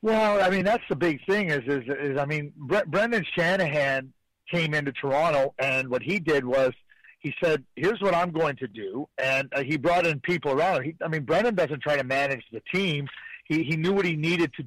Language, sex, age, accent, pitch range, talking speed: French, male, 50-69, American, 150-185 Hz, 225 wpm